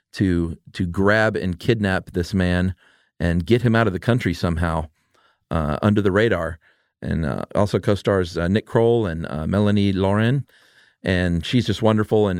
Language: English